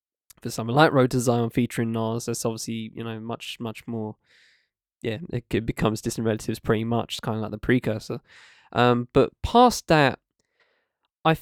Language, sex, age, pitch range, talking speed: English, male, 10-29, 110-130 Hz, 165 wpm